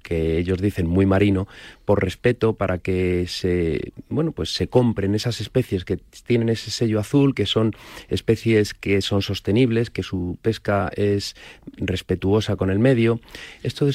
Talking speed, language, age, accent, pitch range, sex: 160 wpm, Spanish, 30-49, Spanish, 100-120 Hz, male